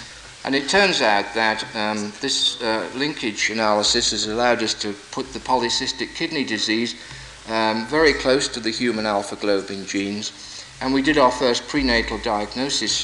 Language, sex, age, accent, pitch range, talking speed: Spanish, male, 50-69, British, 105-130 Hz, 160 wpm